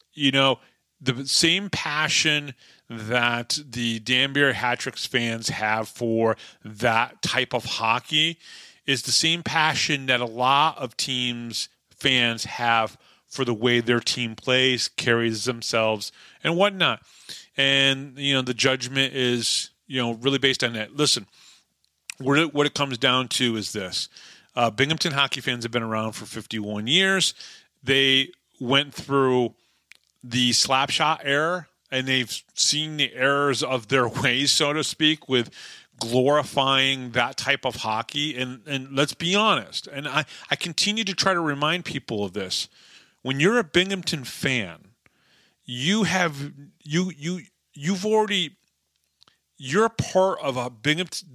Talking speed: 145 wpm